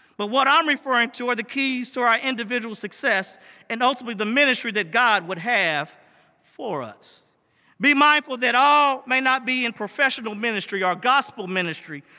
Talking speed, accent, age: 170 wpm, American, 50-69